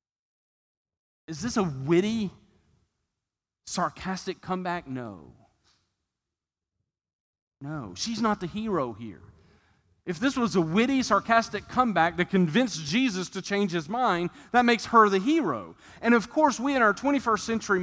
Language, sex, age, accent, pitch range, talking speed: English, male, 40-59, American, 120-200 Hz, 135 wpm